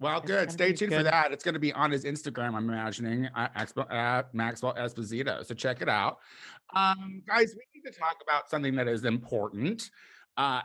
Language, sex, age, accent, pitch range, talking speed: English, male, 30-49, American, 105-140 Hz, 190 wpm